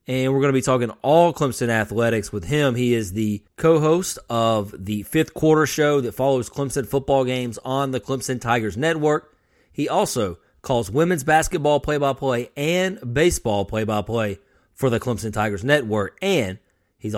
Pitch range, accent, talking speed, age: 115-150 Hz, American, 160 wpm, 30-49